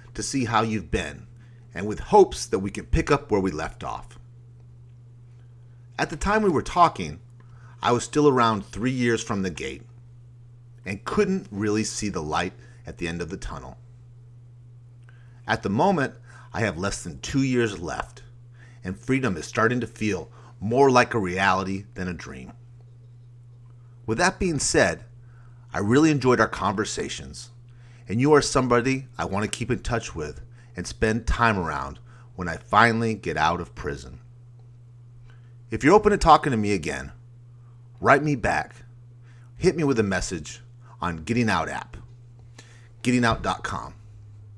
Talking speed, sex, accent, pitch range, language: 160 wpm, male, American, 105-120 Hz, English